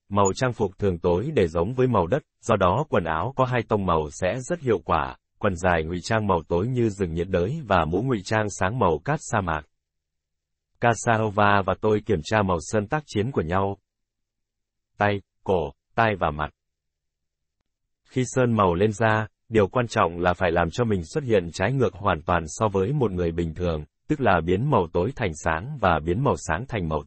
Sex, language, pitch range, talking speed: male, Vietnamese, 85-115 Hz, 210 wpm